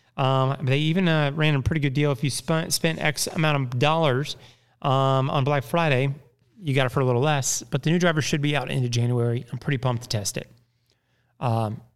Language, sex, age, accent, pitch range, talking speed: English, male, 30-49, American, 120-155 Hz, 220 wpm